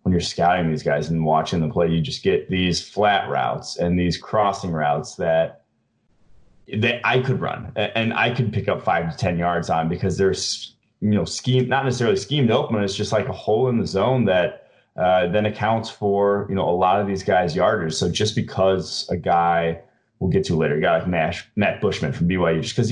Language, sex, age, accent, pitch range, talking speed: English, male, 30-49, American, 85-105 Hz, 215 wpm